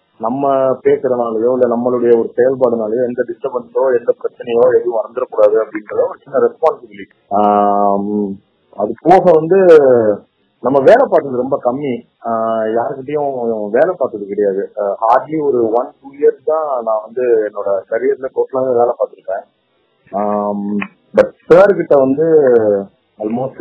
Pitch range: 125-185 Hz